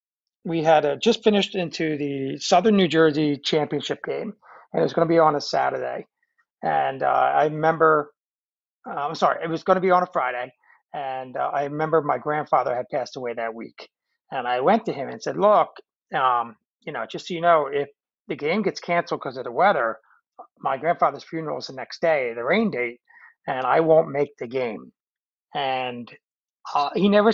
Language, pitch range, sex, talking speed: English, 145-180 Hz, male, 200 wpm